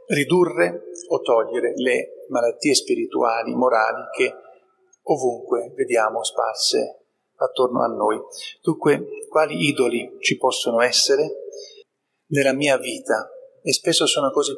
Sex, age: male, 40-59